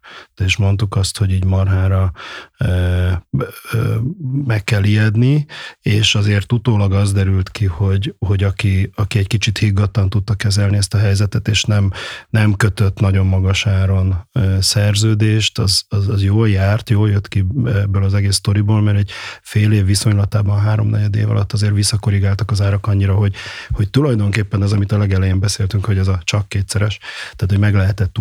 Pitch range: 100-115 Hz